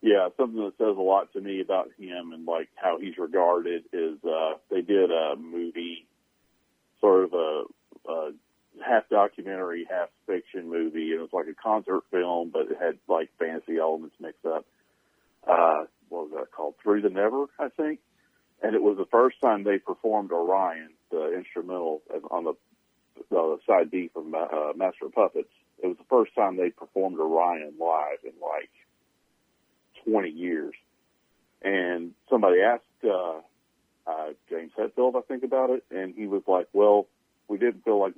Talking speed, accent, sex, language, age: 170 wpm, American, male, English, 40-59